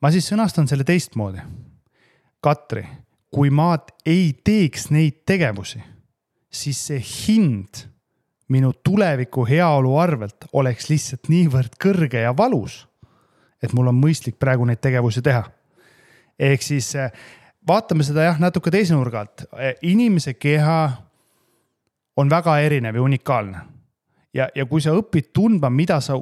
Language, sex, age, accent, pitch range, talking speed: English, male, 30-49, Finnish, 125-165 Hz, 125 wpm